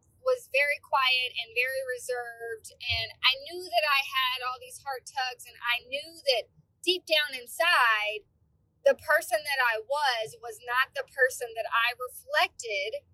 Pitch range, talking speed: 250-340 Hz, 160 wpm